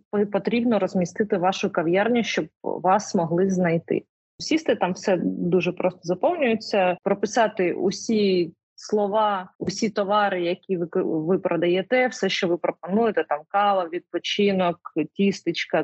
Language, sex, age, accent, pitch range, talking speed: Ukrainian, female, 30-49, native, 175-210 Hz, 120 wpm